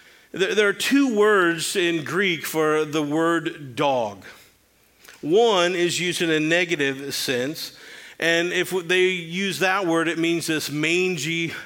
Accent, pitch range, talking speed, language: American, 150-185 Hz, 140 wpm, English